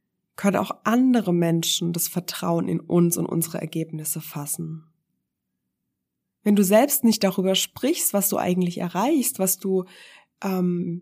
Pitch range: 170-220 Hz